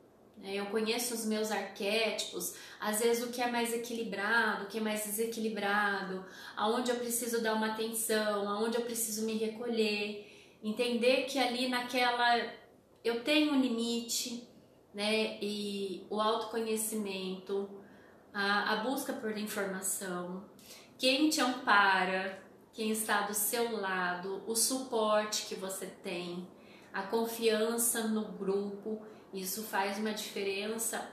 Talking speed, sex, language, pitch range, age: 125 wpm, female, Portuguese, 210-260 Hz, 20-39